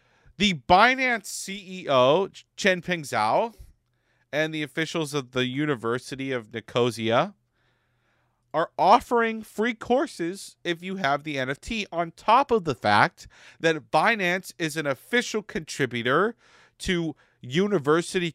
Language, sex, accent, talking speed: English, male, American, 120 wpm